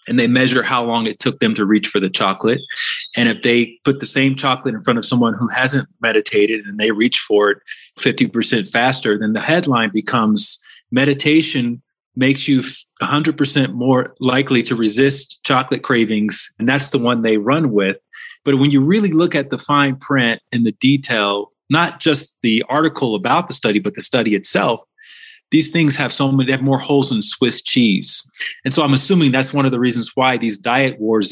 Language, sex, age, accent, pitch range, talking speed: English, male, 30-49, American, 115-140 Hz, 195 wpm